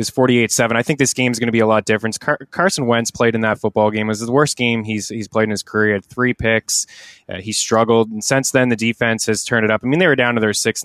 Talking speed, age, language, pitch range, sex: 310 wpm, 20-39, English, 105-120 Hz, male